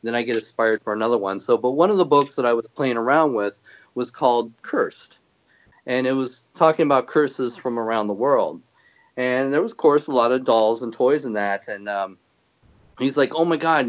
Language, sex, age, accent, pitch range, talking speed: English, male, 30-49, American, 115-145 Hz, 225 wpm